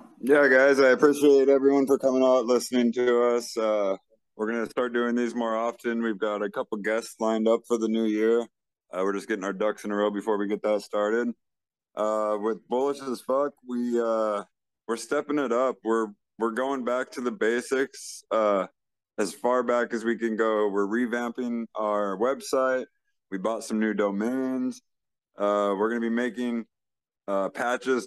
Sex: male